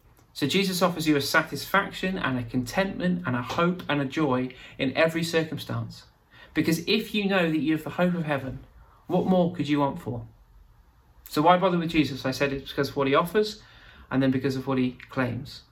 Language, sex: English, male